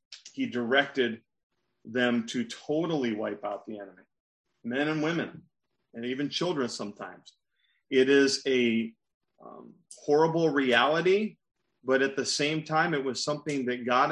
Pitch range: 125-155 Hz